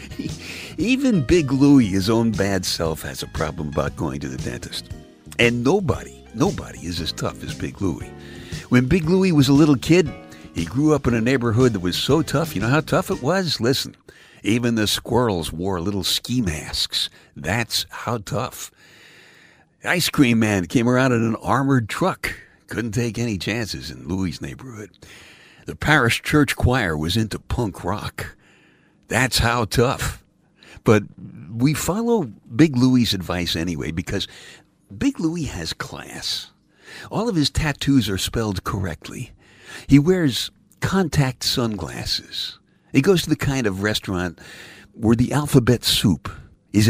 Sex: male